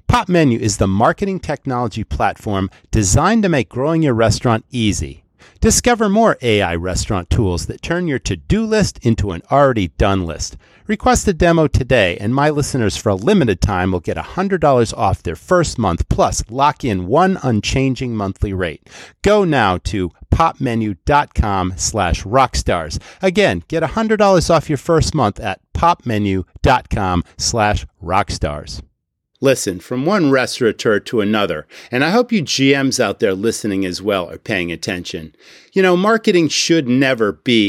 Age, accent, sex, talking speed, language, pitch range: 40-59, American, male, 150 wpm, English, 100-160 Hz